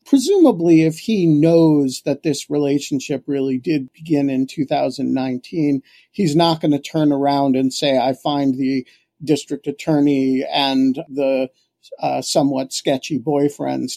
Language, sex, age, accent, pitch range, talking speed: English, male, 50-69, American, 130-160 Hz, 135 wpm